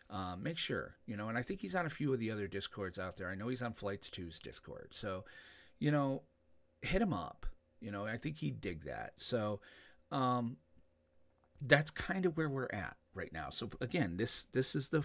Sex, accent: male, American